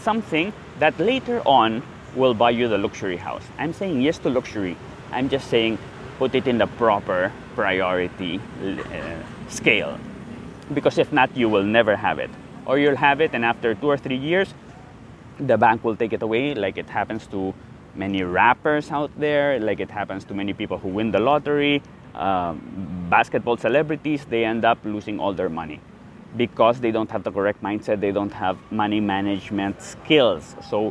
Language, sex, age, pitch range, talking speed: English, male, 20-39, 105-135 Hz, 175 wpm